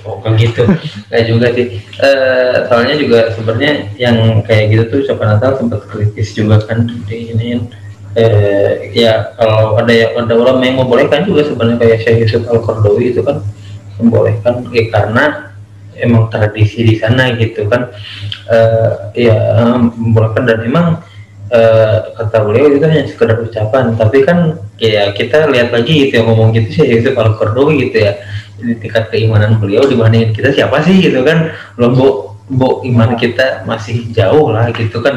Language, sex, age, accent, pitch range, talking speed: Indonesian, male, 20-39, native, 105-120 Hz, 160 wpm